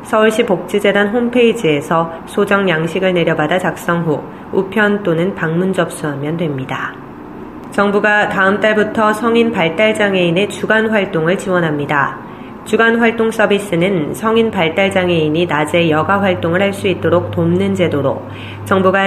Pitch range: 165-205 Hz